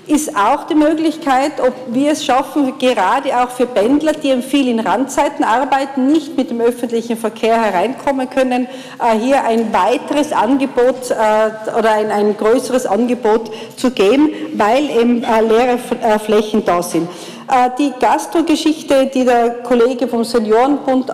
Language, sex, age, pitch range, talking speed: German, female, 50-69, 230-280 Hz, 135 wpm